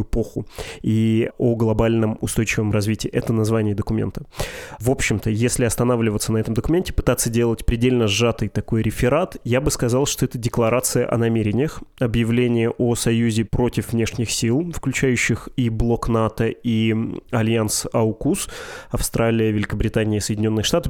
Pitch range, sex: 110-125 Hz, male